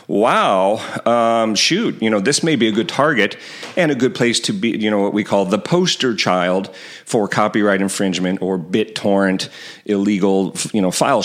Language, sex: English, male